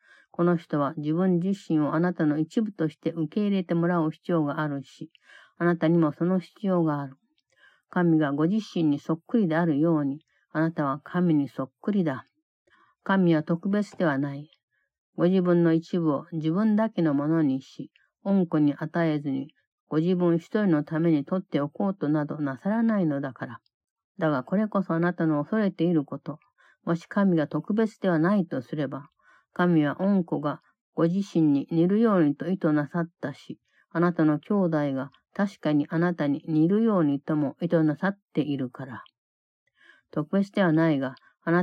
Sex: female